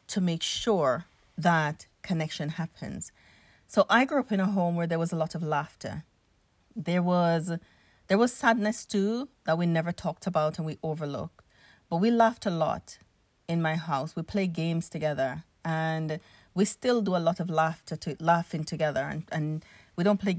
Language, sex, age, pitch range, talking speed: English, female, 30-49, 160-195 Hz, 180 wpm